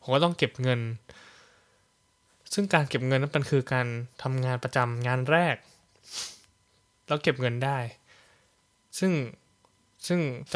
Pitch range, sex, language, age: 115-145 Hz, male, Thai, 20-39